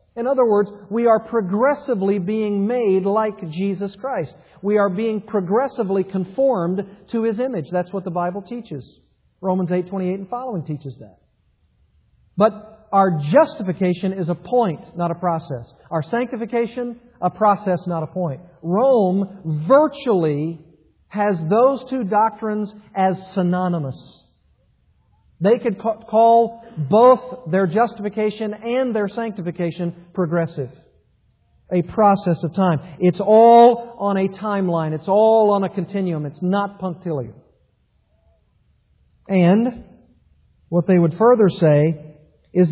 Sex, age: male, 50-69